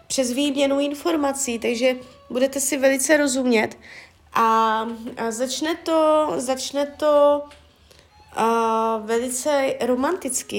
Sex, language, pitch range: female, Czech, 215-275 Hz